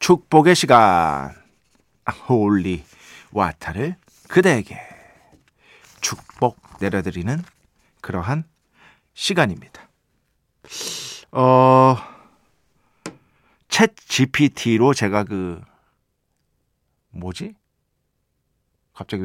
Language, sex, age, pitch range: Korean, male, 50-69, 110-175 Hz